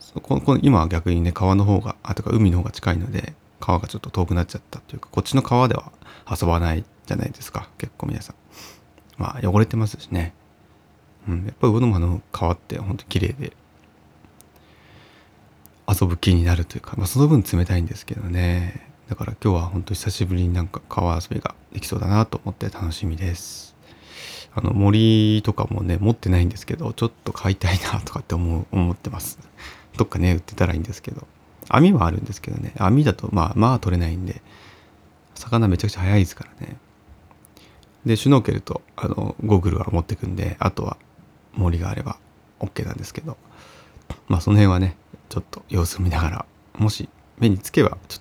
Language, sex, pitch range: Japanese, male, 90-110 Hz